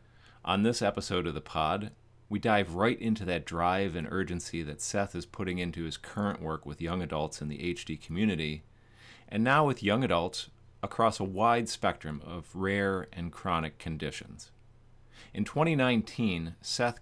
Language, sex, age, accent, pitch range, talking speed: English, male, 40-59, American, 85-115 Hz, 160 wpm